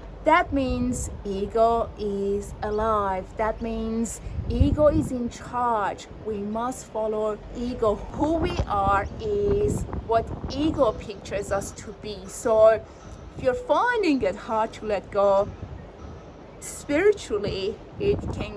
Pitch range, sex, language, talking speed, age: 200-270 Hz, female, English, 120 wpm, 30-49